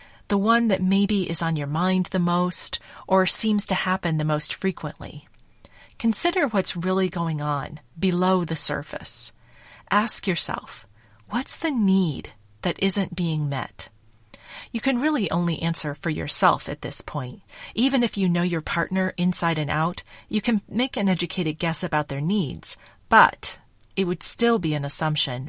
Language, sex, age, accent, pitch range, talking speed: English, female, 40-59, American, 155-195 Hz, 160 wpm